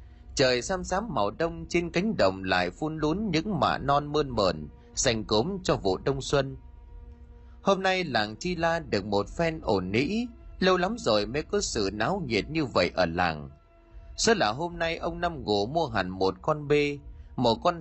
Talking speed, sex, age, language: 195 wpm, male, 30-49, Vietnamese